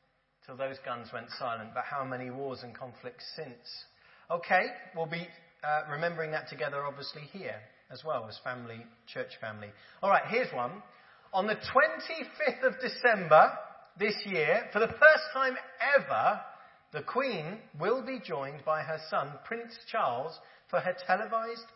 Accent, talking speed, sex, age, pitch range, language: British, 150 wpm, male, 40-59, 135-215 Hz, English